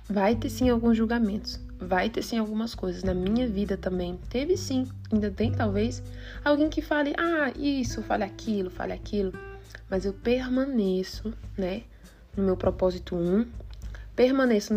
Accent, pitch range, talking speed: Brazilian, 180-255 Hz, 160 wpm